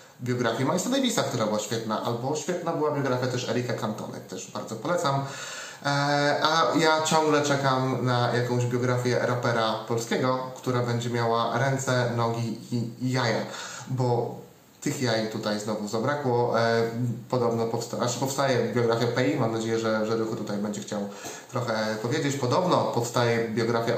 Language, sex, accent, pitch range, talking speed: Polish, male, native, 115-135 Hz, 145 wpm